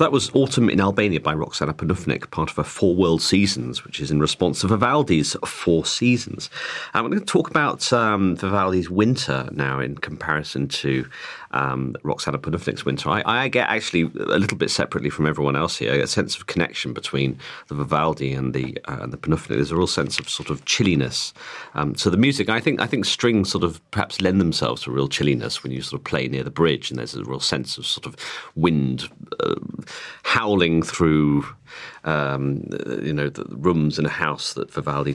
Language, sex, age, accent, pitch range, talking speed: English, male, 40-59, British, 70-95 Hz, 200 wpm